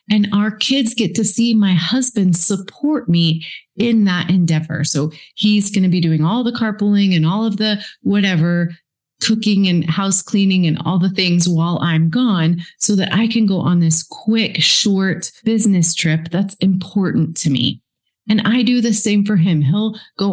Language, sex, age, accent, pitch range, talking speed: English, female, 30-49, American, 165-205 Hz, 185 wpm